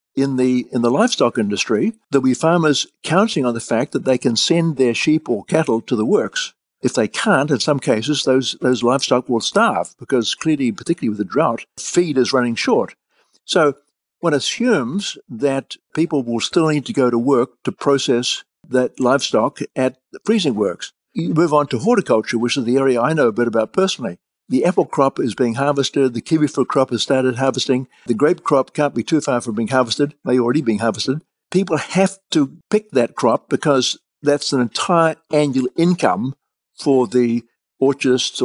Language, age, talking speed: English, 60-79, 190 wpm